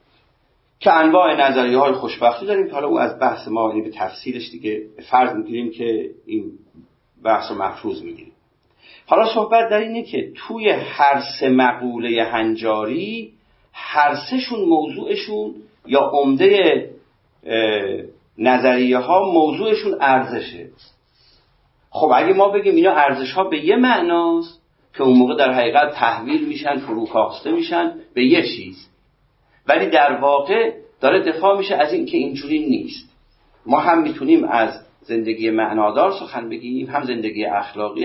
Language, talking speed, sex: Persian, 135 wpm, male